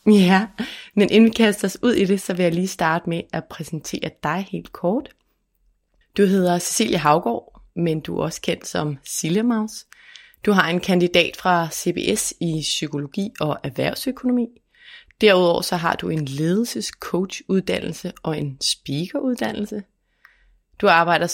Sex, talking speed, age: female, 155 wpm, 30-49